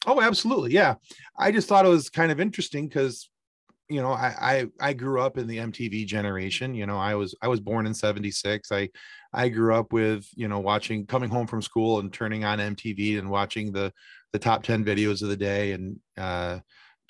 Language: English